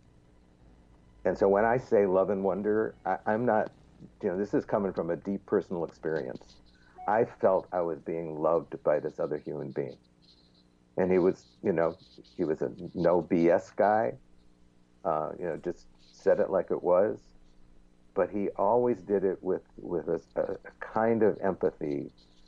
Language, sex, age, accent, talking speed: English, male, 60-79, American, 170 wpm